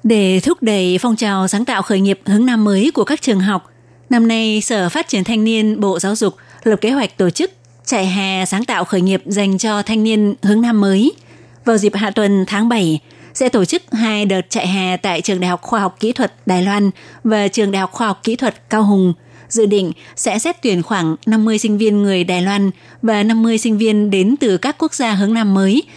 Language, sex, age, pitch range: Vietnamese, female, 20-39, 190-225 Hz